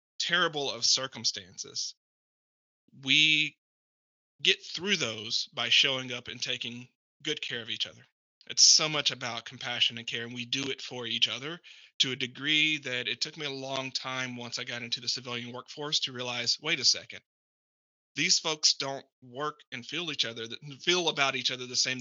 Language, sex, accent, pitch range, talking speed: English, male, American, 120-145 Hz, 185 wpm